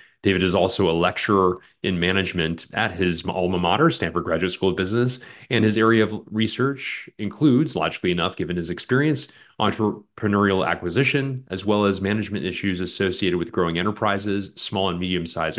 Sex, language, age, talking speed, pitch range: male, English, 30-49, 160 wpm, 90-110 Hz